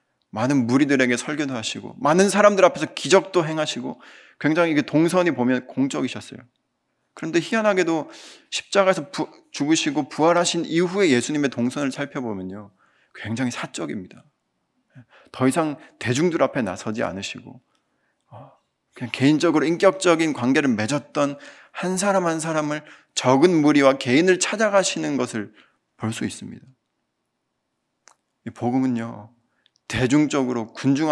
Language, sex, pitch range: Korean, male, 120-165 Hz